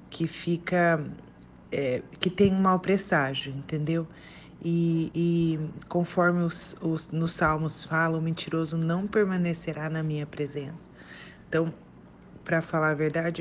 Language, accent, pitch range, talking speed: Portuguese, Brazilian, 160-180 Hz, 130 wpm